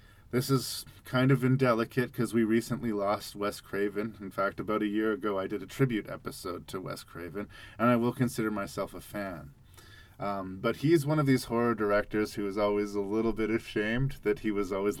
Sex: male